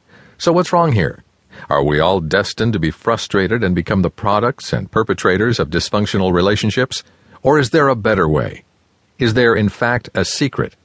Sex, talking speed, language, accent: male, 175 wpm, English, American